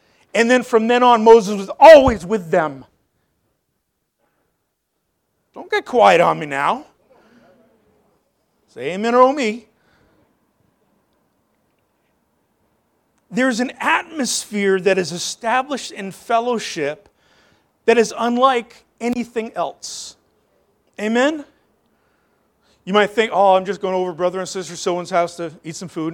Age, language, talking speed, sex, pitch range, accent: 40-59, English, 120 wpm, male, 215-325 Hz, American